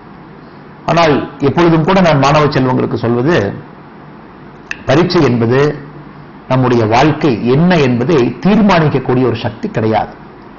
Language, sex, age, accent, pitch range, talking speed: Tamil, male, 50-69, native, 125-170 Hz, 95 wpm